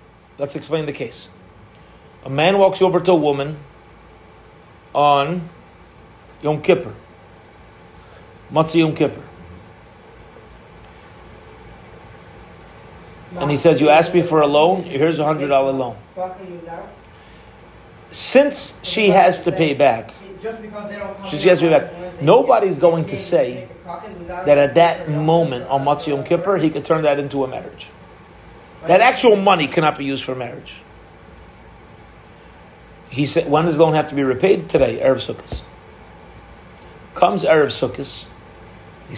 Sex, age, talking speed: male, 40-59, 130 wpm